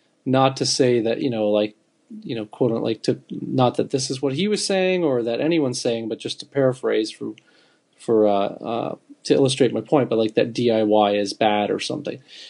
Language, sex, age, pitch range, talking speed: English, male, 30-49, 110-140 Hz, 210 wpm